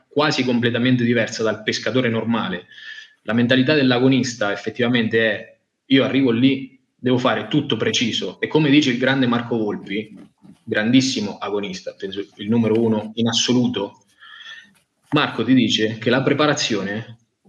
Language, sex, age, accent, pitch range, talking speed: Italian, male, 20-39, native, 115-140 Hz, 135 wpm